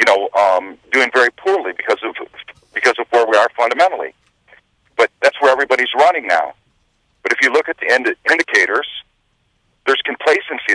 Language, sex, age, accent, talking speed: English, male, 50-69, American, 175 wpm